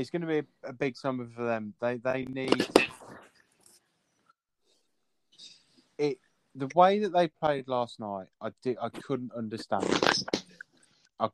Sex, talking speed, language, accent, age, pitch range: male, 140 wpm, English, British, 20-39, 110-135 Hz